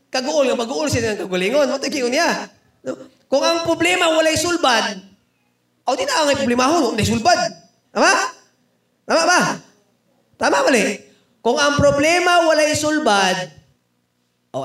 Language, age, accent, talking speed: Filipino, 20-39, native, 130 wpm